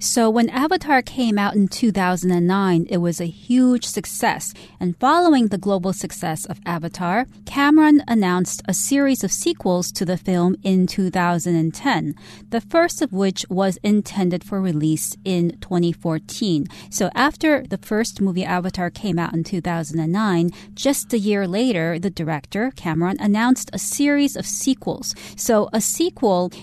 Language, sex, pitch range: Chinese, female, 180-230 Hz